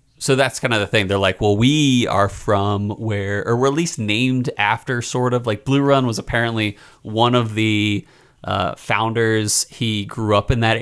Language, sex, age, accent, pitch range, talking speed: English, male, 30-49, American, 105-135 Hz, 200 wpm